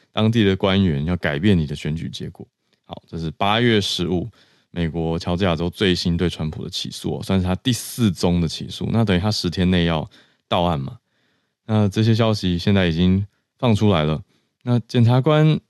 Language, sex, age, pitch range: Chinese, male, 20-39, 85-115 Hz